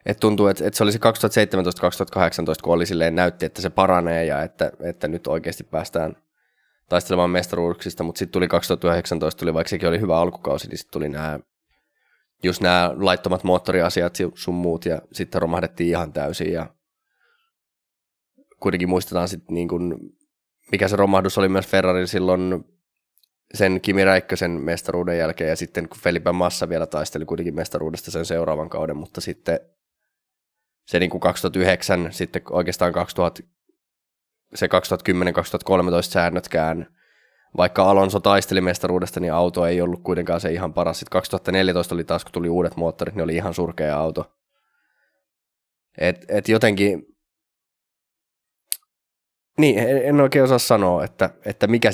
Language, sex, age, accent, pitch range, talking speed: Finnish, male, 20-39, native, 85-105 Hz, 140 wpm